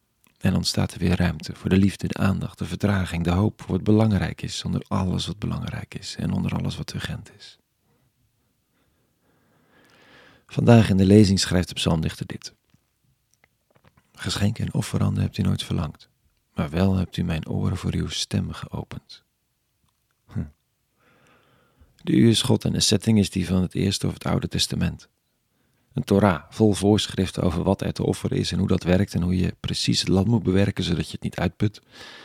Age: 40-59